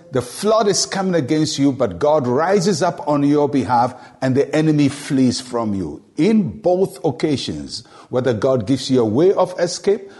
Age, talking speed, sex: 60-79, 175 wpm, male